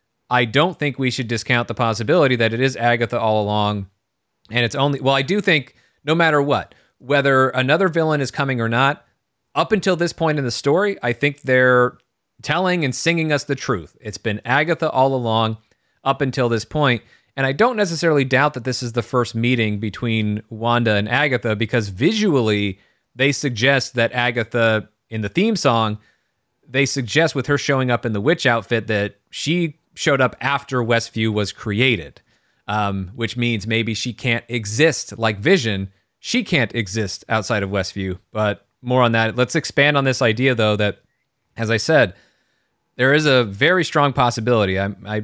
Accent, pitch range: American, 110-140 Hz